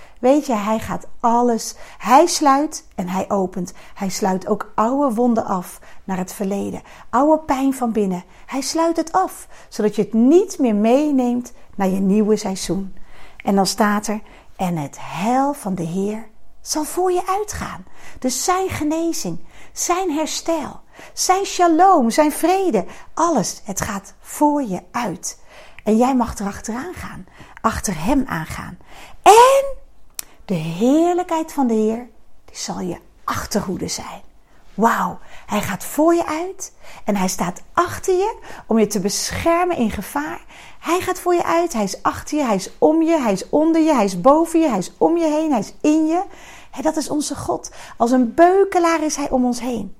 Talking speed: 175 wpm